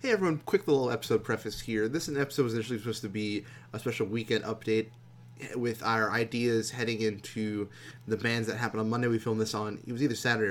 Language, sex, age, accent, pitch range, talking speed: English, male, 20-39, American, 110-125 Hz, 210 wpm